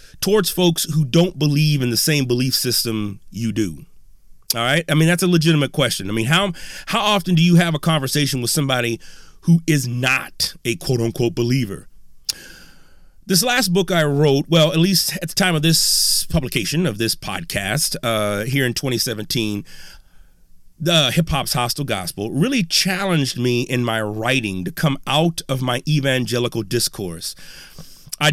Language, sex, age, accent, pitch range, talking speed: English, male, 30-49, American, 125-175 Hz, 165 wpm